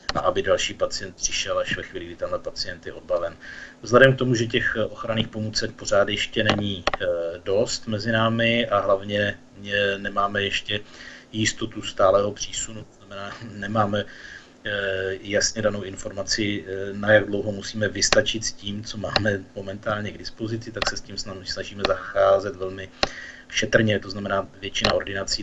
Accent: native